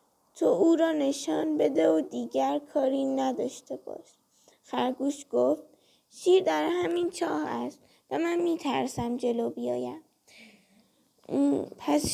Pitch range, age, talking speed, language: 270-340 Hz, 20-39, 115 wpm, Persian